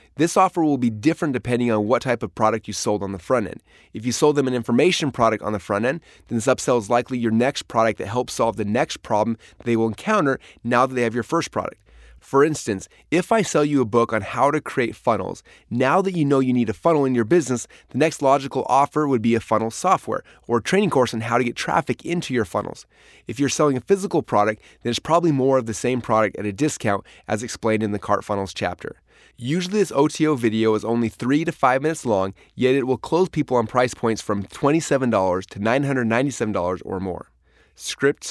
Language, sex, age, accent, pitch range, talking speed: English, male, 30-49, American, 110-145 Hz, 230 wpm